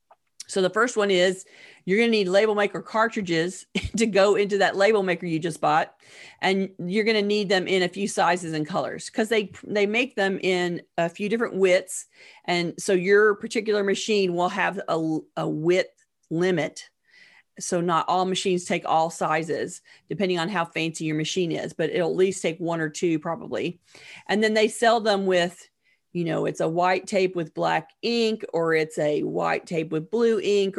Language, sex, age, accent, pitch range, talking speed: English, female, 40-59, American, 170-205 Hz, 195 wpm